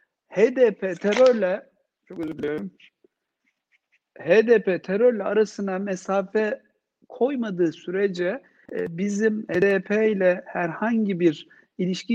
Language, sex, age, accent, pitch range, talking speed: Turkish, male, 60-79, native, 185-235 Hz, 85 wpm